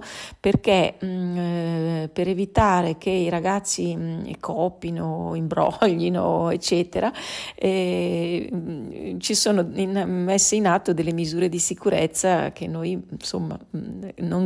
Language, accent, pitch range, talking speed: Italian, native, 170-190 Hz, 100 wpm